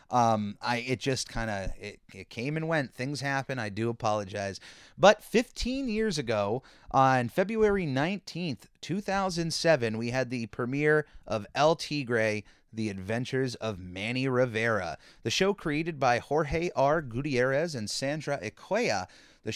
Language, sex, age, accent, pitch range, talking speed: English, male, 30-49, American, 115-155 Hz, 145 wpm